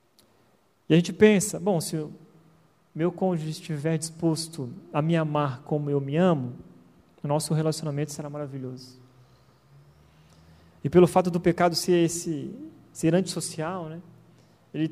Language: Portuguese